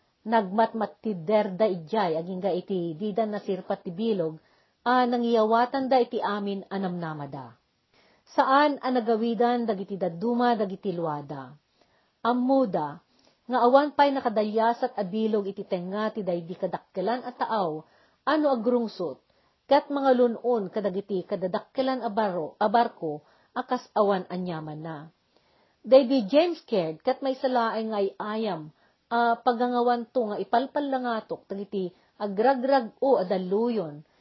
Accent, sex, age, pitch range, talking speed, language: native, female, 40-59, 190-250 Hz, 120 wpm, Filipino